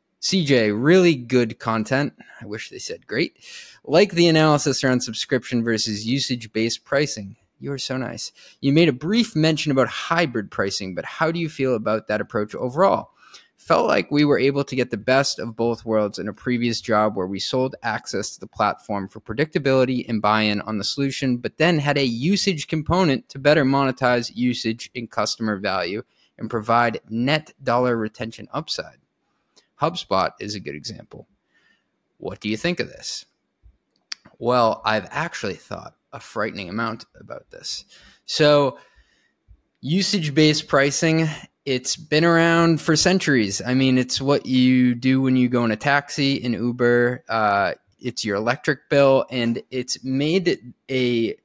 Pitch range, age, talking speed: 115-145 Hz, 20-39, 160 wpm